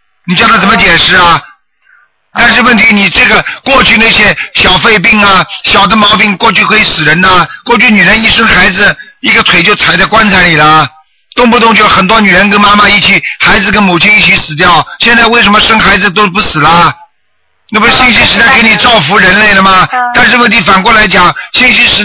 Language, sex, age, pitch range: Chinese, male, 50-69, 190-230 Hz